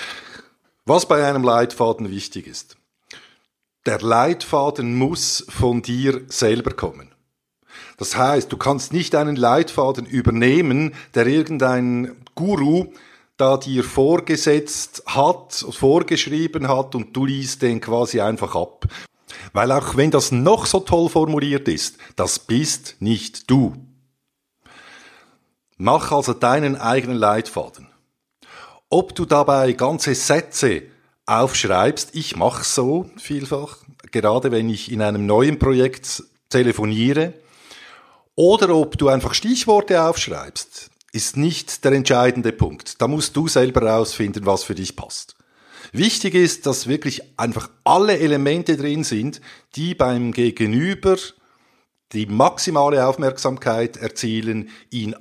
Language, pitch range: German, 120-150 Hz